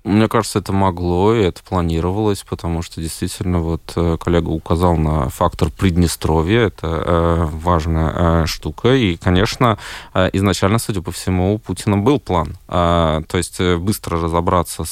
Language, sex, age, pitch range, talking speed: Russian, male, 20-39, 90-110 Hz, 135 wpm